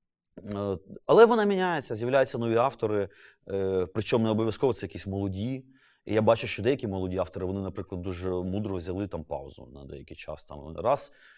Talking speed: 165 wpm